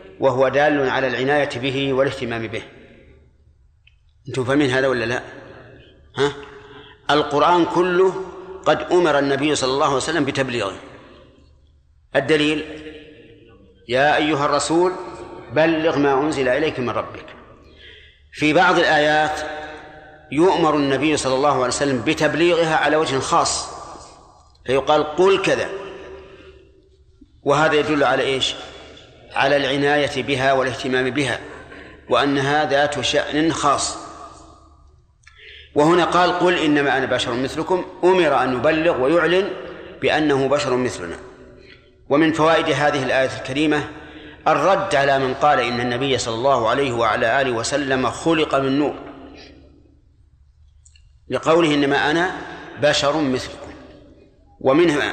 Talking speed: 110 wpm